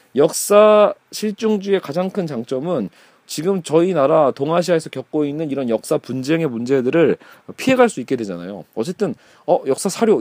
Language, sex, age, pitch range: Korean, male, 40-59, 135-200 Hz